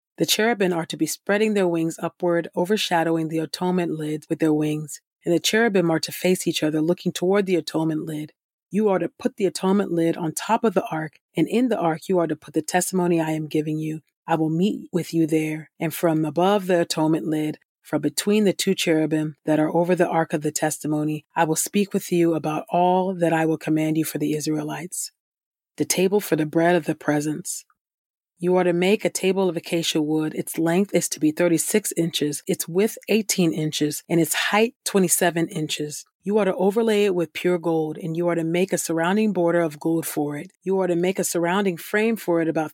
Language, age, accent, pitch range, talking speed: English, 30-49, American, 155-185 Hz, 220 wpm